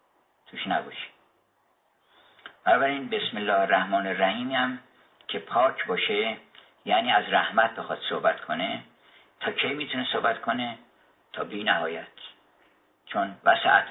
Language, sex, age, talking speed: Persian, male, 50-69, 110 wpm